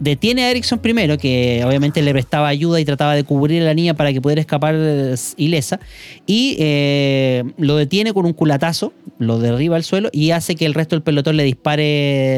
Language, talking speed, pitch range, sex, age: Spanish, 200 wpm, 135-170 Hz, male, 30-49